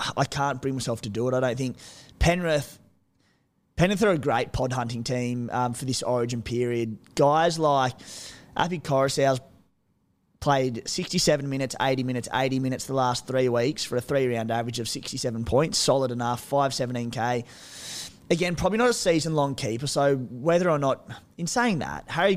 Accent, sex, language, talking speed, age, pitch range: Australian, male, English, 165 wpm, 20-39, 120-150 Hz